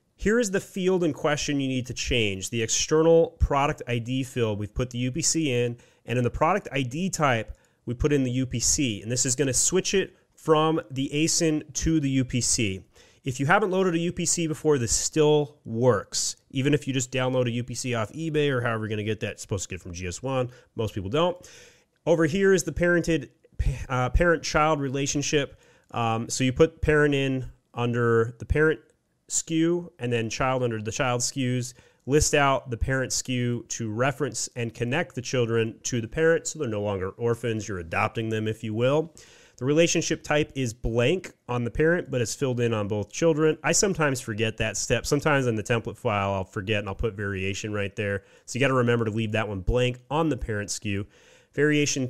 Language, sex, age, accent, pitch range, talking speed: English, male, 30-49, American, 115-150 Hz, 205 wpm